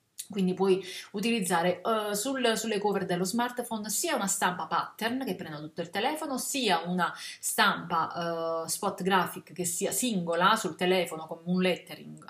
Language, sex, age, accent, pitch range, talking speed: Italian, female, 30-49, native, 180-225 Hz, 155 wpm